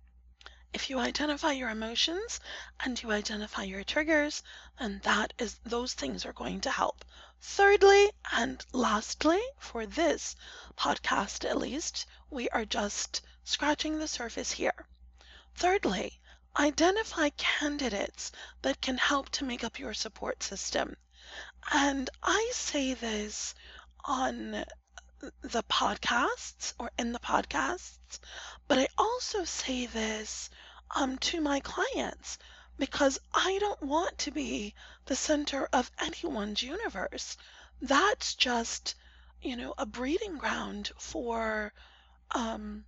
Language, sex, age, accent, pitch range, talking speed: English, female, 30-49, American, 220-320 Hz, 120 wpm